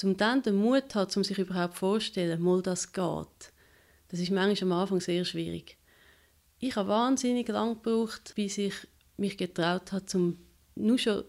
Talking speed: 170 wpm